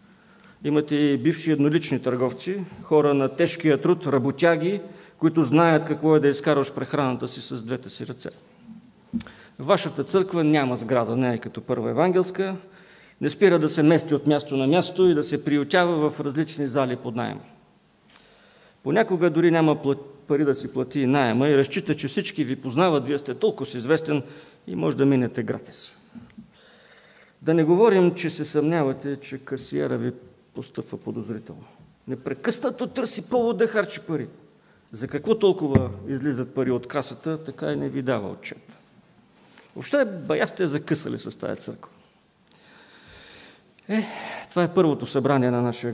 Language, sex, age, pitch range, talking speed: English, male, 50-69, 135-180 Hz, 150 wpm